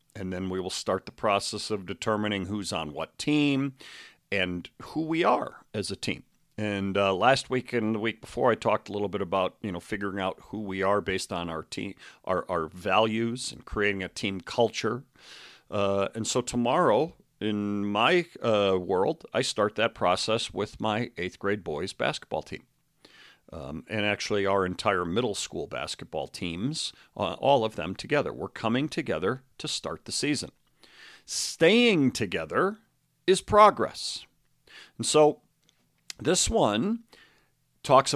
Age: 50-69